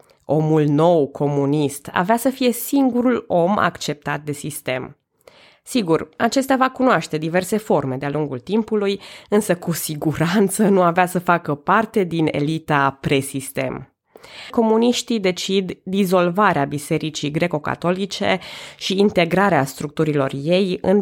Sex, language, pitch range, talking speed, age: female, Romanian, 150-200 Hz, 115 wpm, 20-39